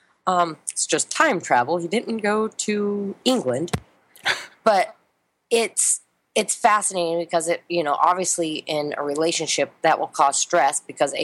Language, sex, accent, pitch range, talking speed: English, female, American, 145-180 Hz, 145 wpm